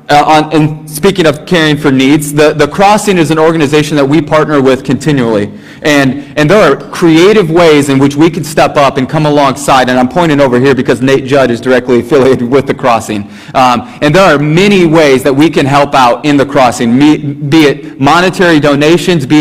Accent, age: American, 30-49